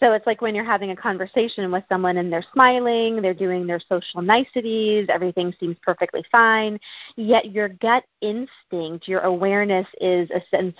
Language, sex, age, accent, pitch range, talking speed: English, female, 30-49, American, 175-215 Hz, 170 wpm